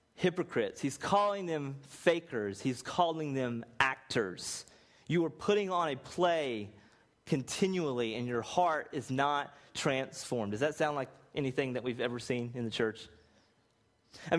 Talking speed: 145 wpm